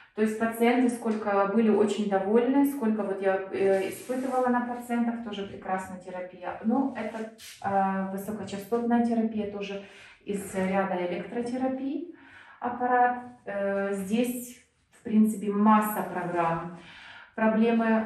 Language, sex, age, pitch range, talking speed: Russian, female, 30-49, 190-230 Hz, 120 wpm